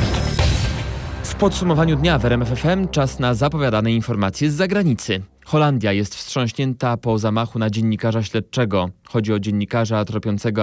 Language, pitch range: Polish, 120-195 Hz